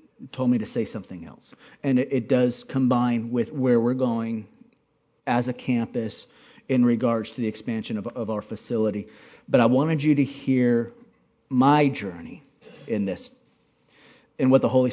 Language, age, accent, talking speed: English, 40-59, American, 165 wpm